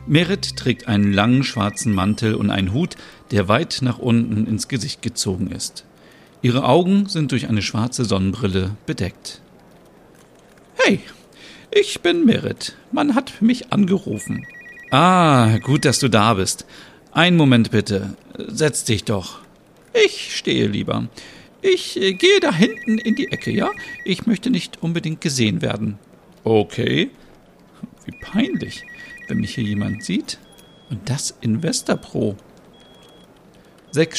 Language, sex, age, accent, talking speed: German, male, 50-69, German, 130 wpm